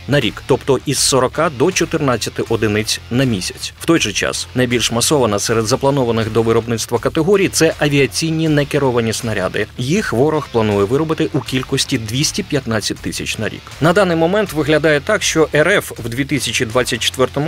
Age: 30-49